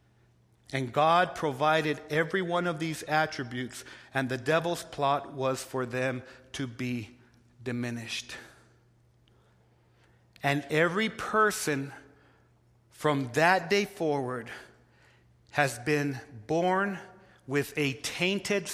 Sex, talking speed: male, 100 wpm